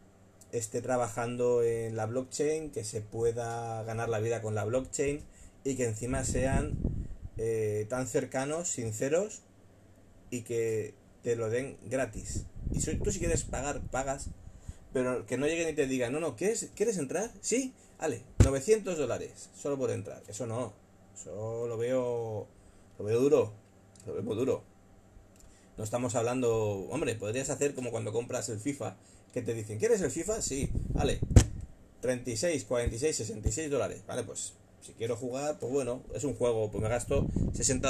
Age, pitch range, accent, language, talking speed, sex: 30-49, 105-140 Hz, Spanish, Spanish, 160 wpm, male